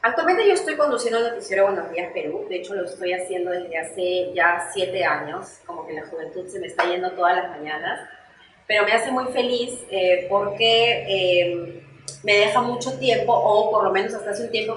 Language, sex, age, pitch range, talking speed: Spanish, female, 30-49, 195-255 Hz, 205 wpm